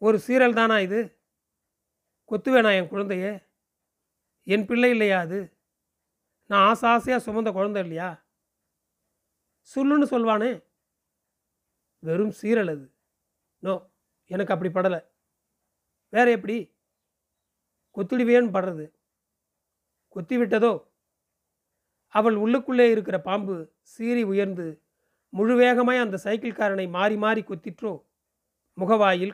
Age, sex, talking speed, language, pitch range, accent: 30-49, male, 90 wpm, Tamil, 185-230 Hz, native